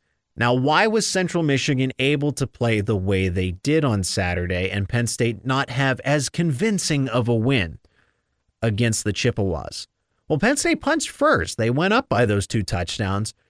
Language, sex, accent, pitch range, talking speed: English, male, American, 105-135 Hz, 175 wpm